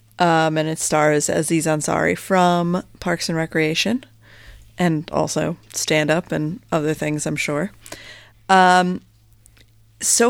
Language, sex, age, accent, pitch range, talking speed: English, female, 30-49, American, 145-185 Hz, 115 wpm